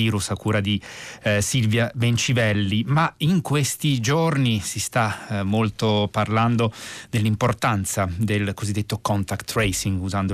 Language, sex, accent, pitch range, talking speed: Italian, male, native, 100-115 Hz, 120 wpm